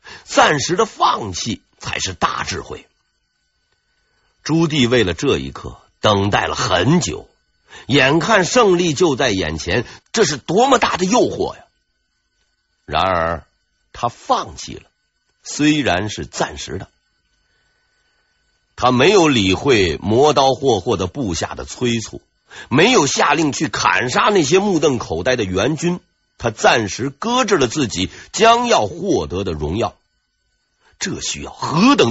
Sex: male